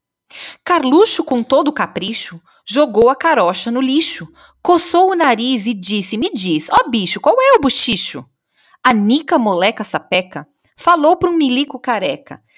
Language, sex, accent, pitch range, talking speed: English, female, Brazilian, 190-295 Hz, 155 wpm